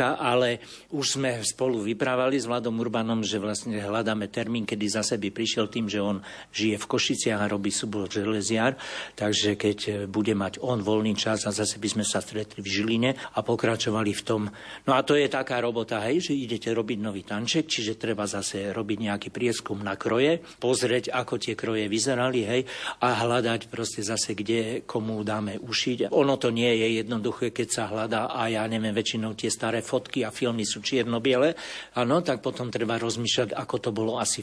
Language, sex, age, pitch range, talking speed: Slovak, male, 60-79, 110-125 Hz, 185 wpm